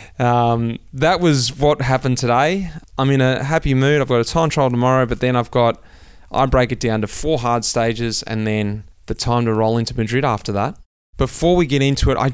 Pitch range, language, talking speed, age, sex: 115-140 Hz, English, 220 wpm, 20-39, male